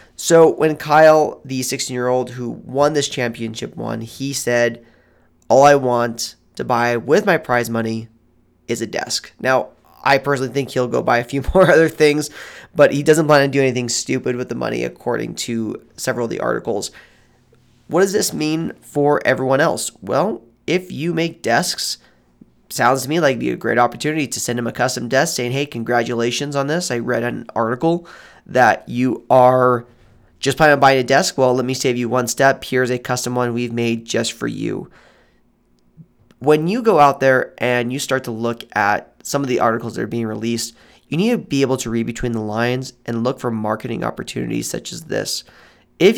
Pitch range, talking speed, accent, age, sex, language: 115-140 Hz, 200 wpm, American, 20-39, male, English